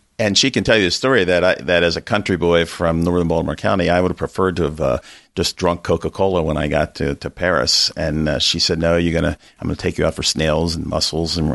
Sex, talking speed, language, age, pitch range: male, 270 wpm, English, 50-69, 80-95 Hz